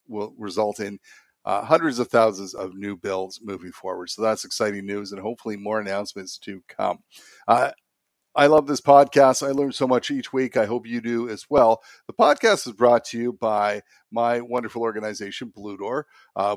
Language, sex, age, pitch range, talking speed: English, male, 40-59, 105-125 Hz, 190 wpm